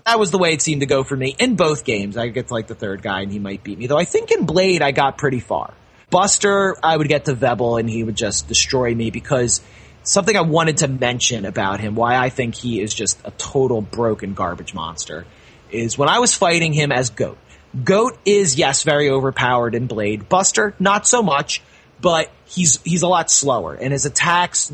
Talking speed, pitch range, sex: 225 wpm, 110-160 Hz, male